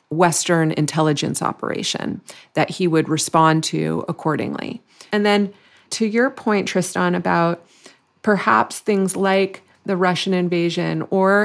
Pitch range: 170-205 Hz